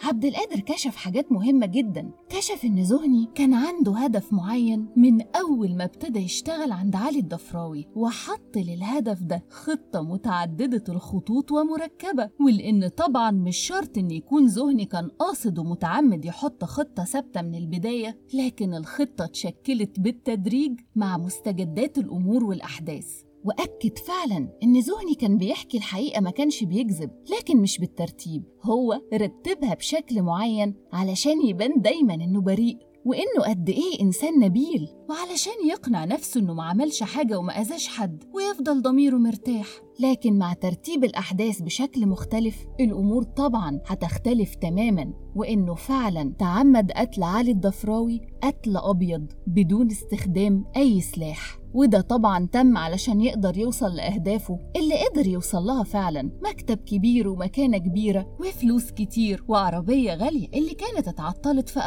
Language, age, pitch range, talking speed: Arabic, 30-49, 190-265 Hz, 130 wpm